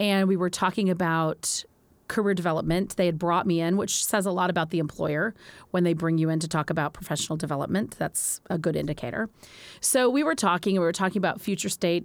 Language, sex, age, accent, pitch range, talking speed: English, female, 30-49, American, 170-220 Hz, 220 wpm